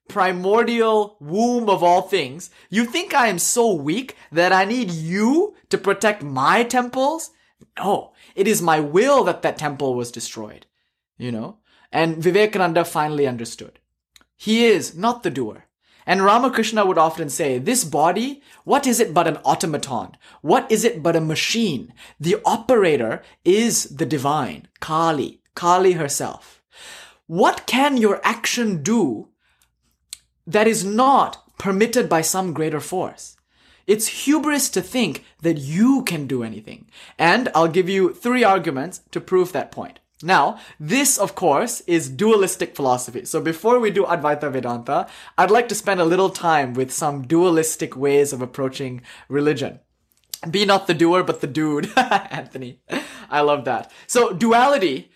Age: 20-39